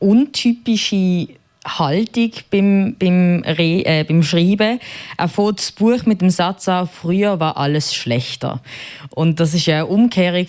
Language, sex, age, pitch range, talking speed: German, female, 20-39, 160-205 Hz, 145 wpm